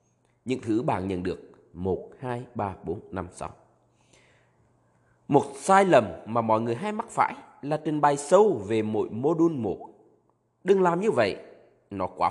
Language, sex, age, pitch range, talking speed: Vietnamese, male, 20-39, 95-150 Hz, 170 wpm